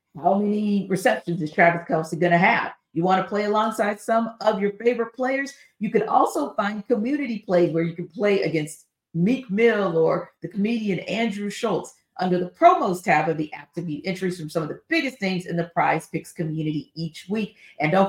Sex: female